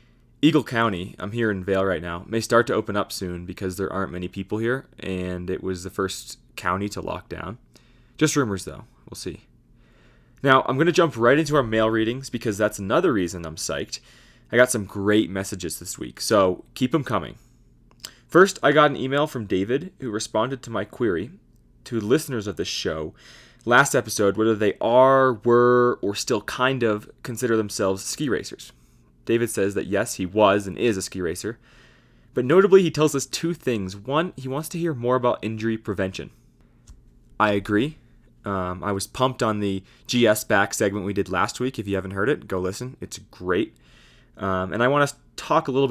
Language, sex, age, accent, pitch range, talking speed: English, male, 20-39, American, 95-125 Hz, 195 wpm